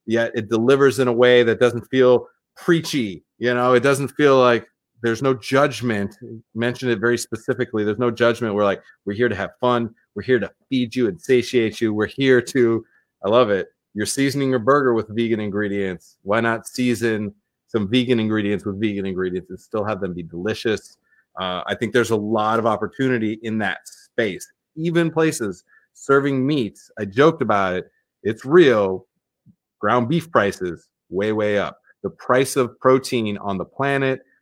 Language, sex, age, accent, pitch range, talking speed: English, male, 30-49, American, 105-125 Hz, 180 wpm